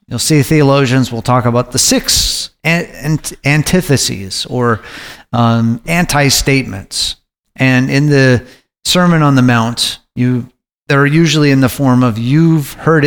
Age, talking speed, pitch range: 40-59, 125 wpm, 130-160 Hz